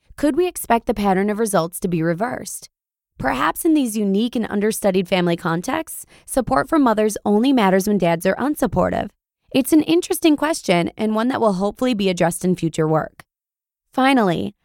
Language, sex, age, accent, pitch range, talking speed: English, female, 20-39, American, 185-245 Hz, 170 wpm